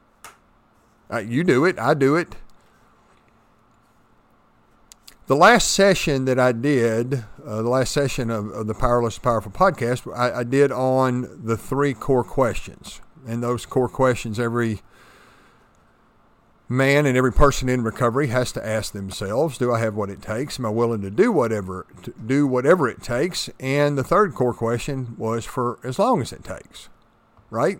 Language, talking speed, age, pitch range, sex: English, 160 wpm, 50-69, 115-150 Hz, male